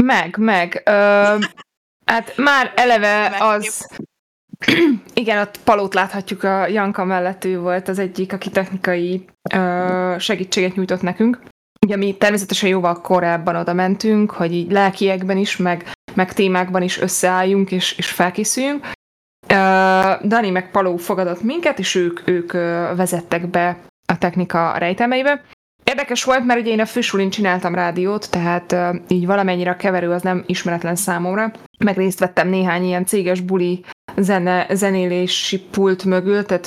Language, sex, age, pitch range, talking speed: Hungarian, female, 20-39, 180-200 Hz, 140 wpm